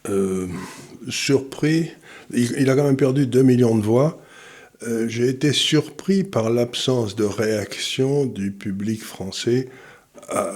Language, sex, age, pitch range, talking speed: French, male, 50-69, 100-125 Hz, 135 wpm